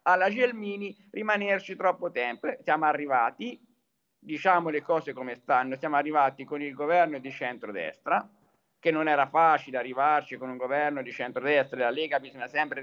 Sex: male